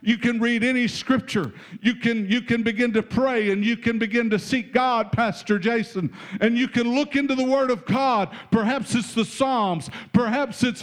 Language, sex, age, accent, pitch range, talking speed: English, male, 50-69, American, 150-240 Hz, 200 wpm